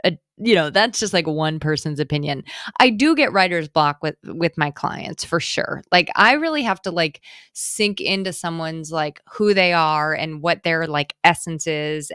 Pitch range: 155-200 Hz